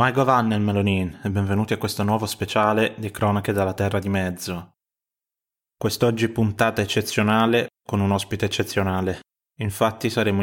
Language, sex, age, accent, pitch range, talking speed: Italian, male, 20-39, native, 100-115 Hz, 140 wpm